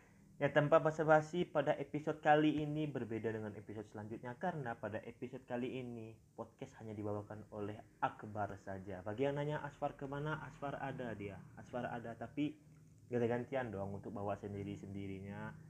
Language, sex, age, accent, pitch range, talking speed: Indonesian, male, 20-39, native, 105-140 Hz, 150 wpm